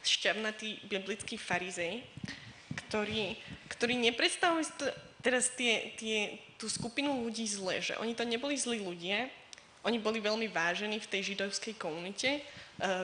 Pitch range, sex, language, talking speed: 195-230 Hz, female, Slovak, 135 wpm